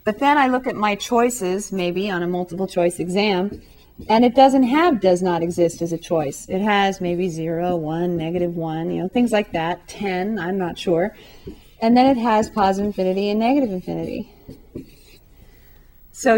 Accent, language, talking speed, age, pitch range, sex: American, English, 175 wpm, 30-49, 175-220 Hz, female